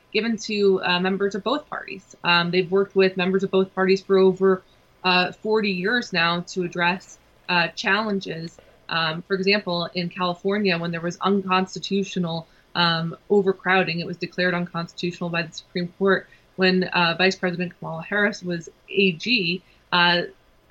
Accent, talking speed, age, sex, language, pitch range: American, 155 wpm, 20-39, female, English, 170-190 Hz